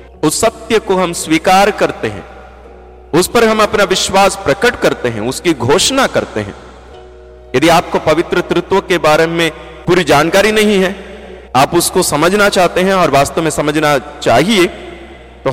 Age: 40-59